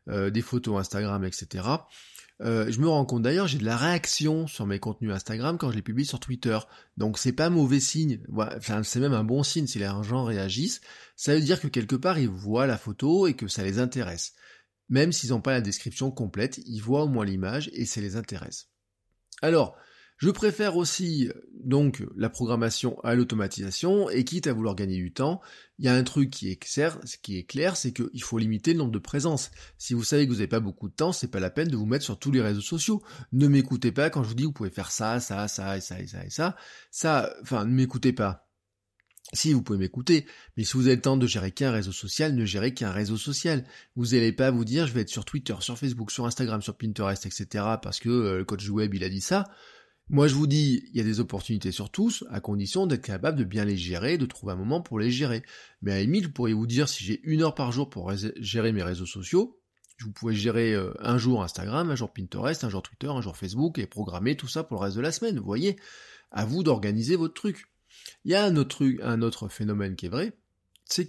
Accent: French